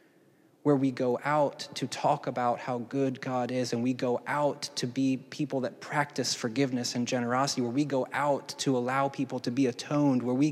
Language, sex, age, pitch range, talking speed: English, male, 20-39, 130-145 Hz, 200 wpm